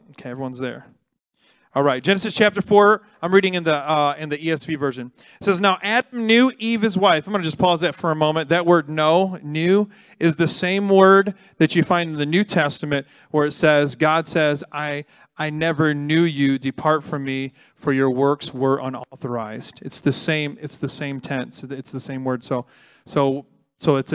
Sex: male